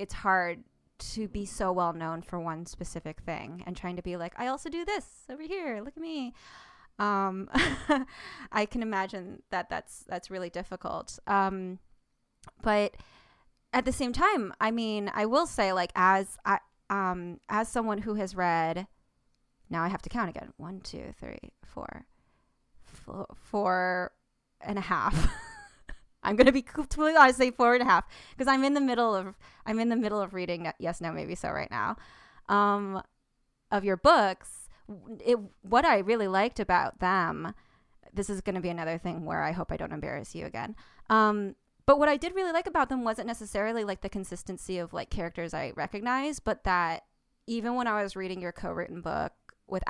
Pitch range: 175-230 Hz